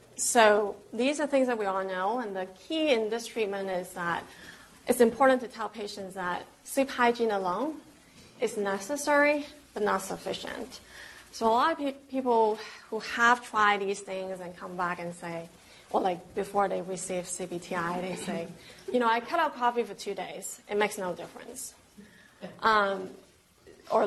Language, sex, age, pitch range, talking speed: English, female, 30-49, 190-240 Hz, 170 wpm